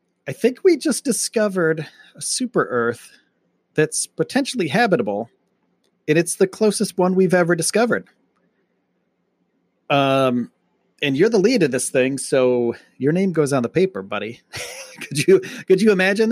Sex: male